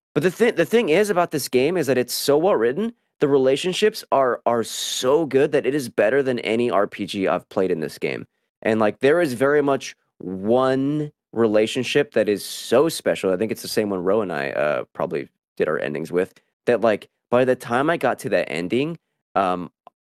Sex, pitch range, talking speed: male, 95-150 Hz, 210 wpm